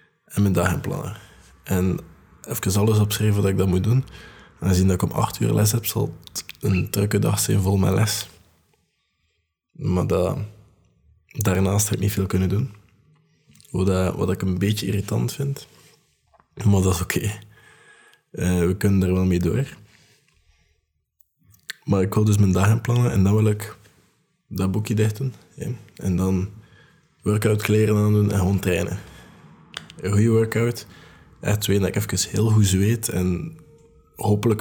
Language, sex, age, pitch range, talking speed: Dutch, male, 20-39, 95-110 Hz, 165 wpm